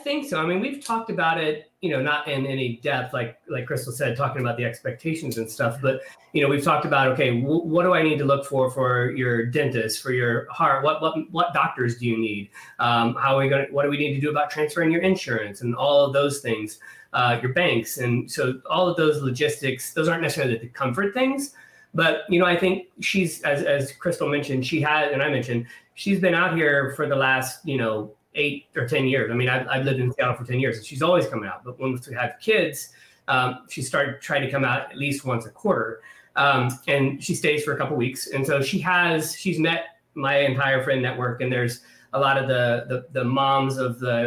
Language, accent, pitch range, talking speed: English, American, 125-160 Hz, 245 wpm